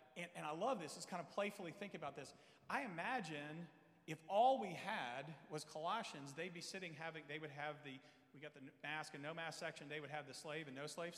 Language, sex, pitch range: English, male, 145-185 Hz